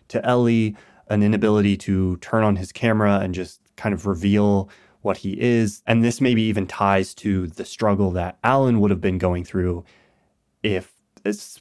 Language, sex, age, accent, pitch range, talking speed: English, male, 20-39, American, 95-115 Hz, 175 wpm